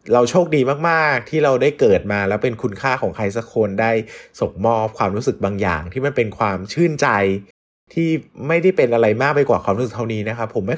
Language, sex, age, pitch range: Thai, male, 20-39, 95-120 Hz